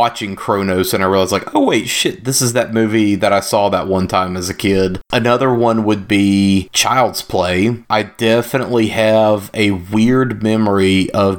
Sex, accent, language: male, American, English